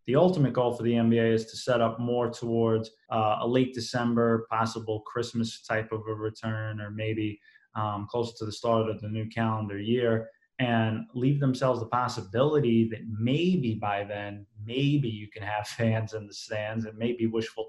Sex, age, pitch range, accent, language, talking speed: male, 20-39, 110-120 Hz, American, English, 185 wpm